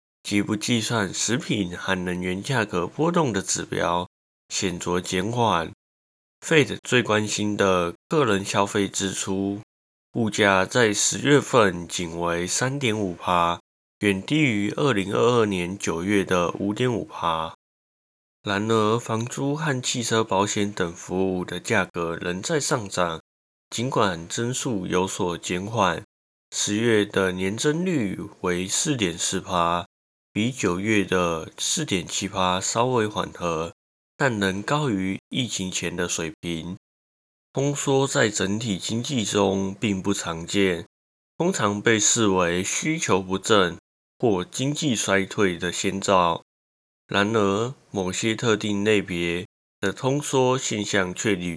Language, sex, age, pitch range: Chinese, male, 20-39, 90-110 Hz